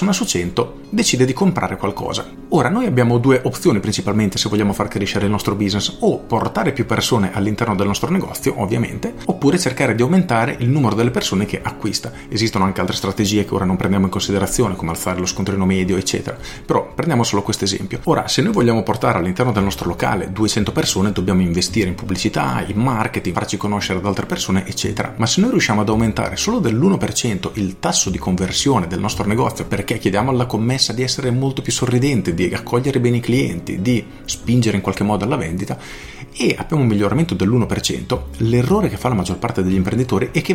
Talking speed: 195 wpm